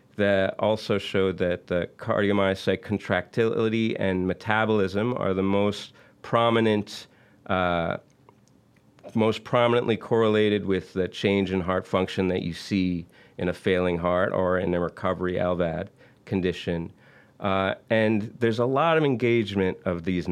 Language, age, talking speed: English, 30-49, 135 wpm